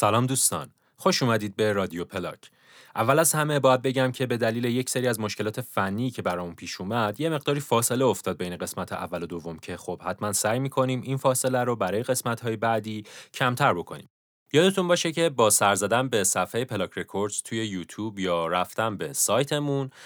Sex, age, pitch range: male, 30-49, 95-135 Hz